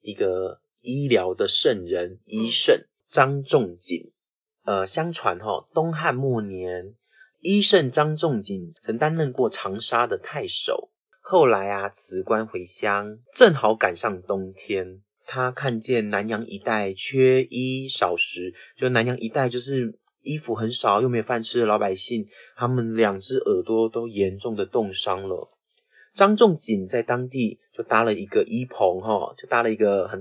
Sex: male